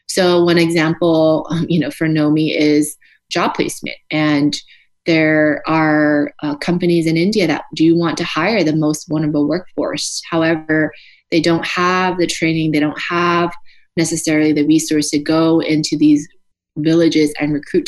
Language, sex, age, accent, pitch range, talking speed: English, female, 20-39, American, 155-170 Hz, 150 wpm